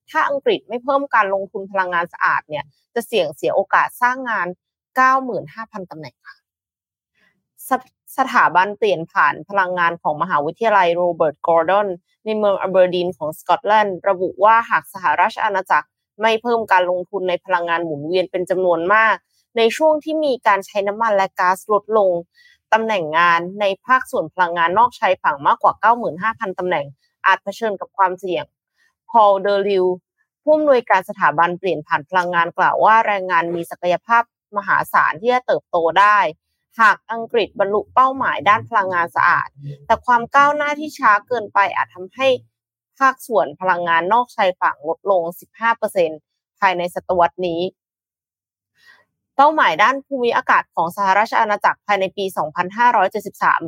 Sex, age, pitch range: female, 20-39, 175-230 Hz